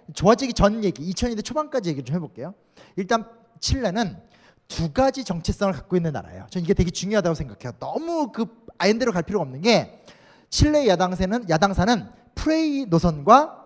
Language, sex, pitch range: Korean, male, 170-245 Hz